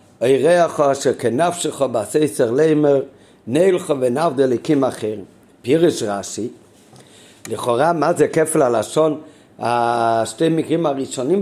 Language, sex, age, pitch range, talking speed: Hebrew, male, 60-79, 125-165 Hz, 110 wpm